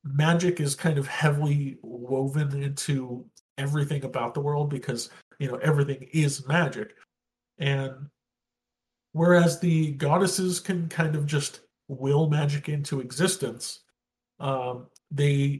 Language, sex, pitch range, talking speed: English, male, 135-165 Hz, 120 wpm